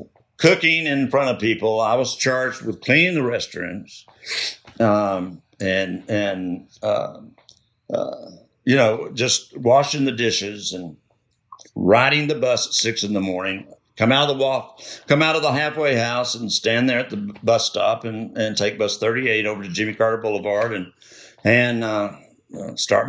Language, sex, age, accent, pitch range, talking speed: English, male, 60-79, American, 100-120 Hz, 165 wpm